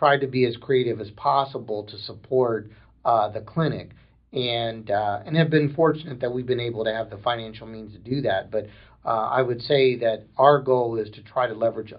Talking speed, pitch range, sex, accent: 215 wpm, 105-130 Hz, male, American